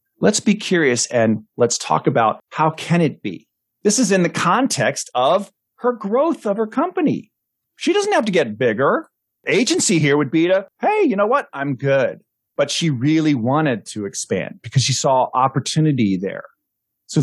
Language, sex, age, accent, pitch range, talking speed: English, male, 40-59, American, 115-175 Hz, 180 wpm